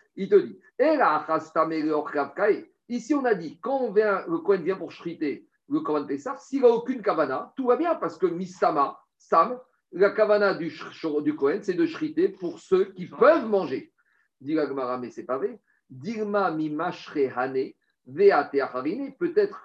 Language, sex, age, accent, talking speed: French, male, 50-69, French, 135 wpm